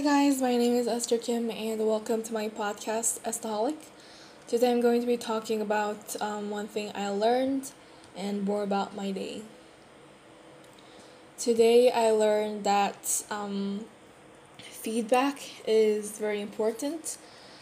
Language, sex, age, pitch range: Korean, female, 10-29, 205-235 Hz